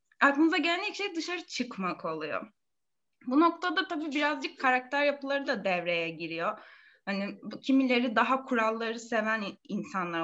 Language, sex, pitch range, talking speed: Turkish, female, 205-255 Hz, 135 wpm